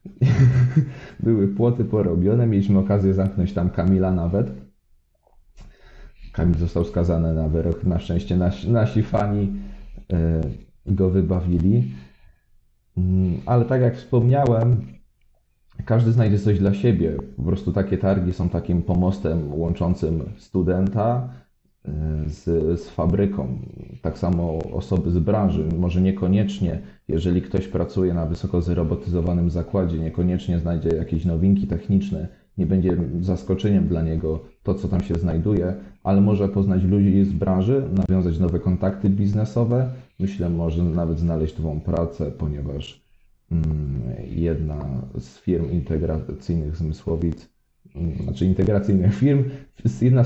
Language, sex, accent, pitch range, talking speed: Polish, male, native, 80-100 Hz, 115 wpm